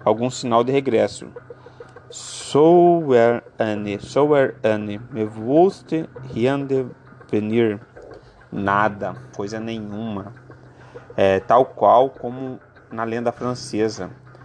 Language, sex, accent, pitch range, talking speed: Portuguese, male, Brazilian, 105-135 Hz, 85 wpm